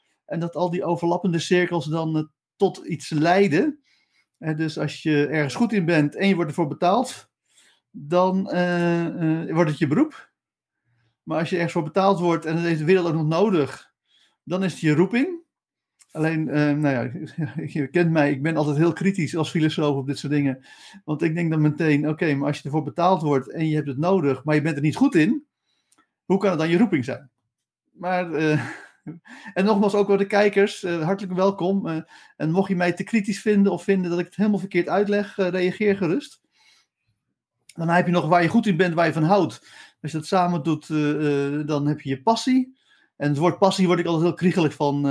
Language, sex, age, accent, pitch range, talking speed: Dutch, male, 50-69, Dutch, 150-190 Hz, 220 wpm